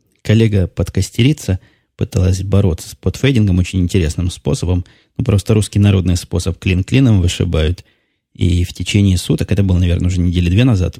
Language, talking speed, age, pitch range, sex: Russian, 135 wpm, 20-39, 90-105 Hz, male